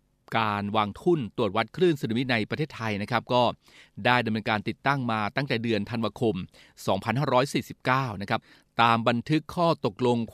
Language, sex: Thai, male